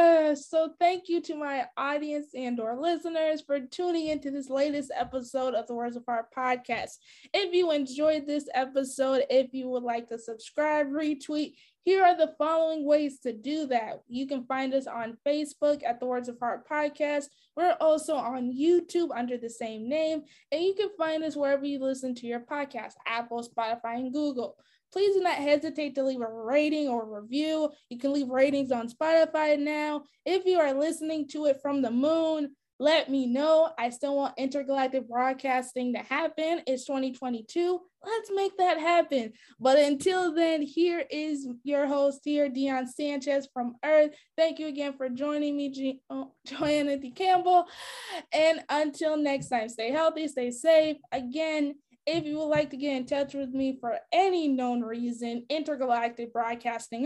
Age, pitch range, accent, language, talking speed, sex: 20-39, 255-315 Hz, American, English, 175 wpm, female